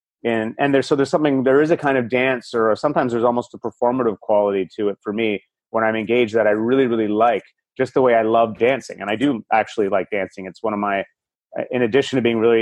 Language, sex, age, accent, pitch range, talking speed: English, male, 30-49, American, 105-125 Hz, 250 wpm